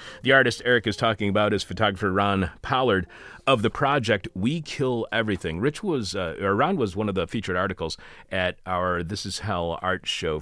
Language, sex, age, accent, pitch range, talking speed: English, male, 40-59, American, 80-110 Hz, 195 wpm